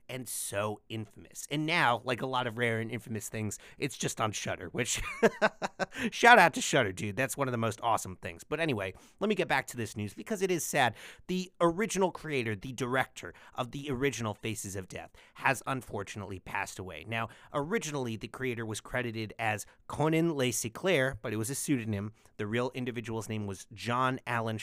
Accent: American